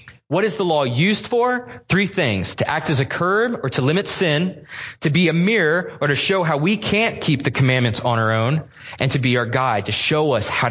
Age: 20-39